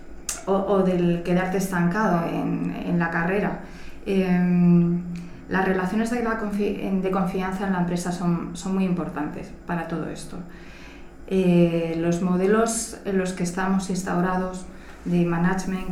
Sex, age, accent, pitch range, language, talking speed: female, 20-39, Spanish, 175-195 Hz, Spanish, 140 wpm